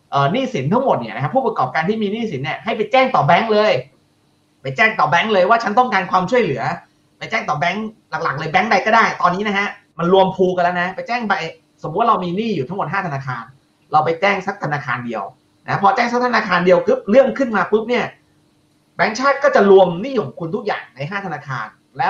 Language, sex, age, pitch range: Thai, male, 30-49, 145-215 Hz